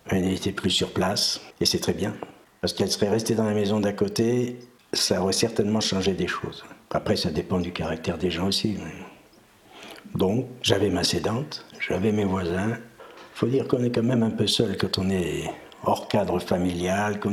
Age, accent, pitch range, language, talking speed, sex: 60-79, French, 90-110 Hz, French, 195 wpm, male